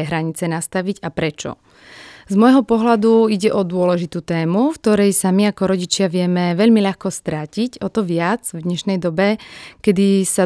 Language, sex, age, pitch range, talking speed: Slovak, female, 30-49, 175-205 Hz, 165 wpm